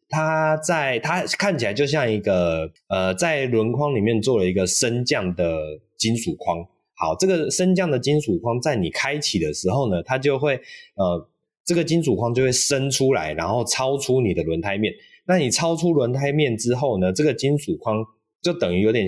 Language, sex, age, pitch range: Chinese, male, 20-39, 95-140 Hz